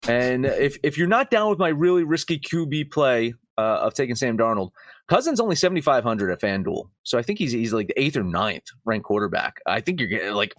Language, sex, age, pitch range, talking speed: English, male, 30-49, 120-180 Hz, 230 wpm